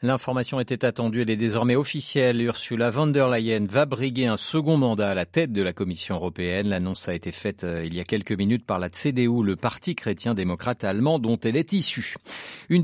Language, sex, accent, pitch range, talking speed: French, male, French, 100-130 Hz, 205 wpm